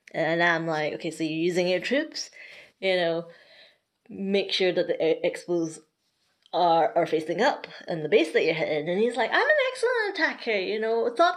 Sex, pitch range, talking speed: female, 175-280 Hz, 190 wpm